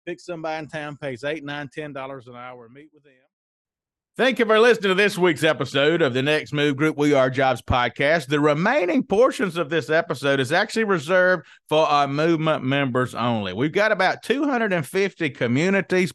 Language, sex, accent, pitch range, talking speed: English, male, American, 140-175 Hz, 185 wpm